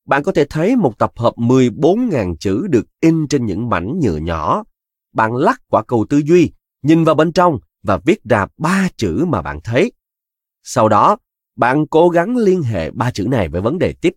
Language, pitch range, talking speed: Vietnamese, 100-160 Hz, 205 wpm